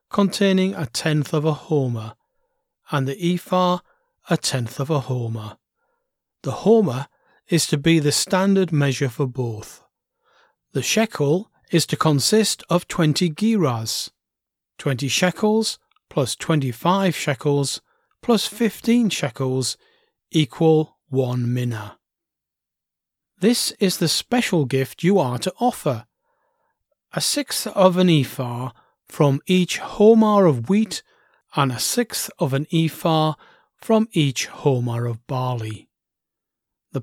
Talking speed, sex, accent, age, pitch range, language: 120 wpm, male, British, 40-59, 135-200 Hz, English